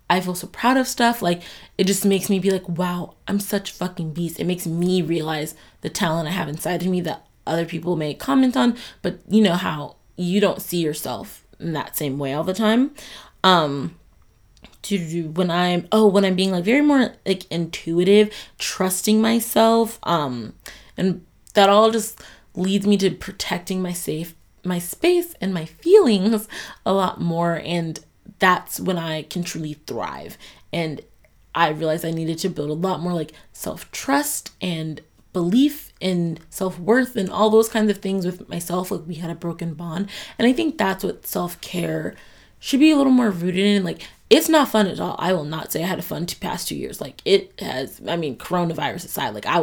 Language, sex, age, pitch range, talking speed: English, female, 20-39, 170-205 Hz, 195 wpm